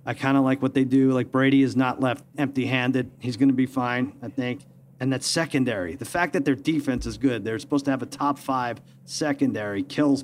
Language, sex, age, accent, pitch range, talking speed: English, male, 40-59, American, 125-145 Hz, 230 wpm